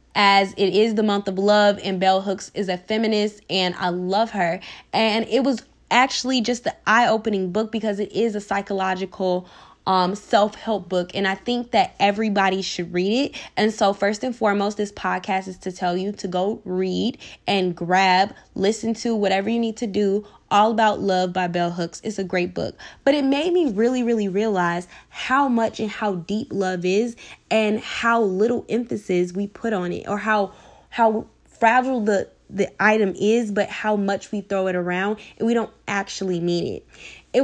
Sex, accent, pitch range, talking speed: female, American, 185-220 Hz, 190 wpm